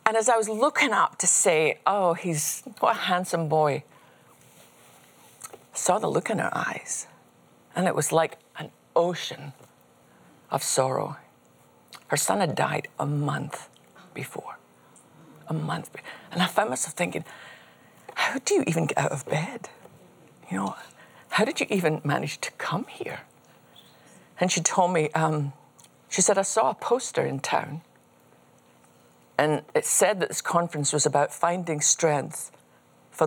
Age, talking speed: 50-69, 155 wpm